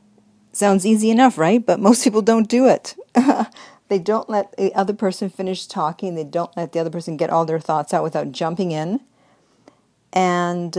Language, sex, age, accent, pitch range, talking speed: English, female, 50-69, American, 160-200 Hz, 185 wpm